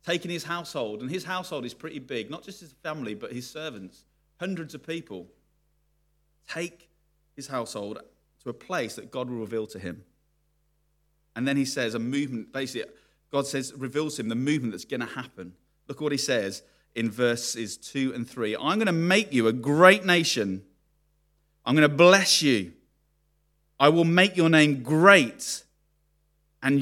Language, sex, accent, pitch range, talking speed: English, male, British, 120-155 Hz, 175 wpm